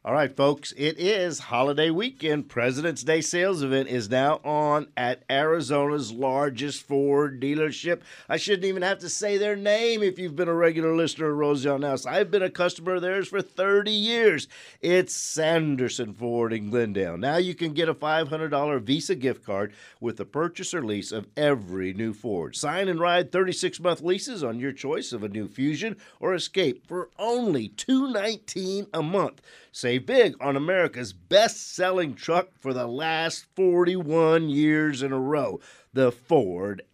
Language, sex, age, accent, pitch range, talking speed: English, male, 50-69, American, 130-185 Hz, 165 wpm